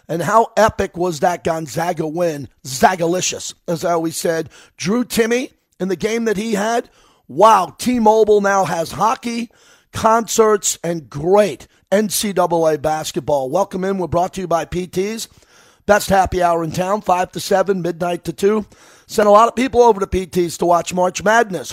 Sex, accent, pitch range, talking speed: male, American, 170-220 Hz, 170 wpm